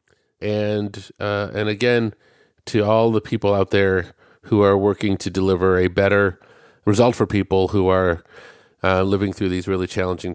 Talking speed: 160 wpm